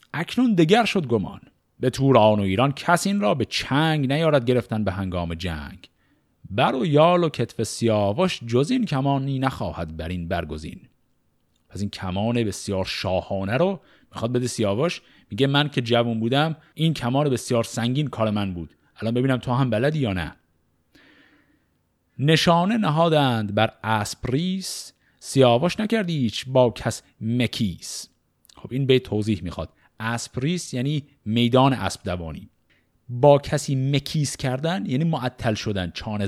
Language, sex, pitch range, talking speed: Persian, male, 95-140 Hz, 145 wpm